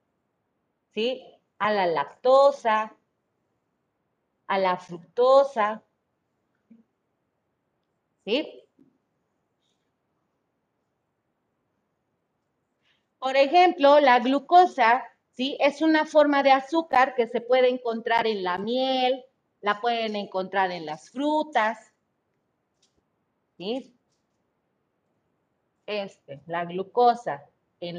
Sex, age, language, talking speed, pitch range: female, 30-49, Spanish, 75 wpm, 210-265 Hz